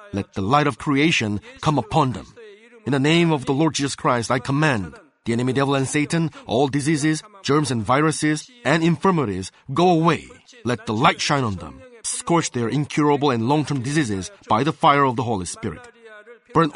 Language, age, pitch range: Korean, 30-49, 125-155 Hz